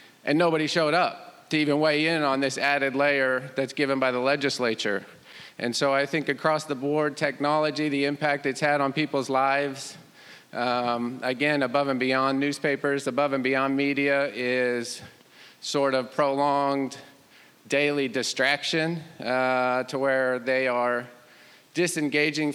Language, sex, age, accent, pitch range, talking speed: English, male, 40-59, American, 130-150 Hz, 145 wpm